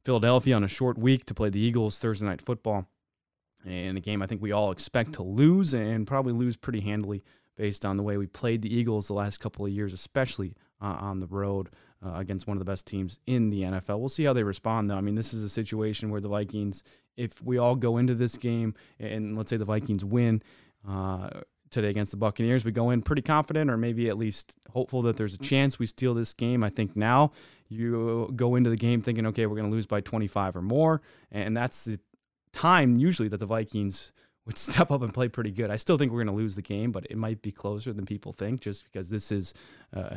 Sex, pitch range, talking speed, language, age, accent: male, 100-120 Hz, 240 wpm, English, 20-39, American